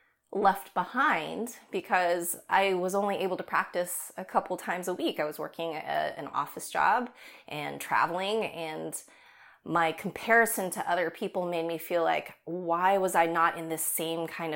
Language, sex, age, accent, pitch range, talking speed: English, female, 20-39, American, 165-200 Hz, 165 wpm